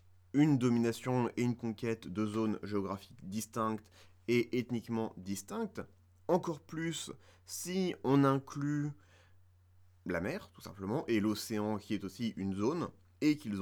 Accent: French